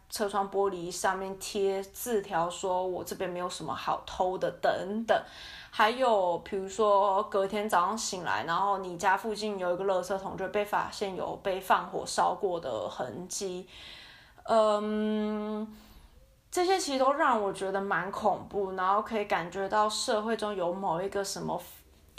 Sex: female